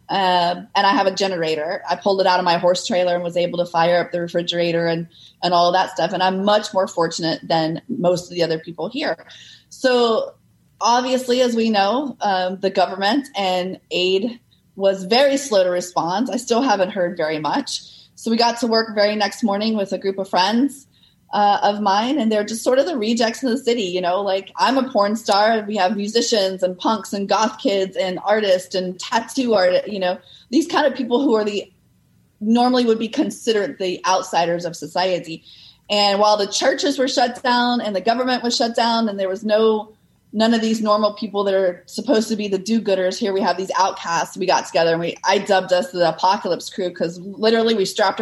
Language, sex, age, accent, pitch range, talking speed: English, female, 20-39, American, 180-230 Hz, 215 wpm